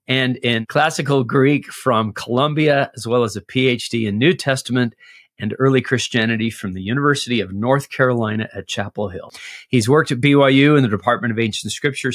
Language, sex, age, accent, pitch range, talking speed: English, male, 40-59, American, 110-130 Hz, 180 wpm